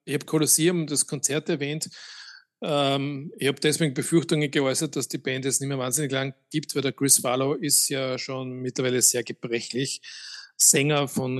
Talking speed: 175 wpm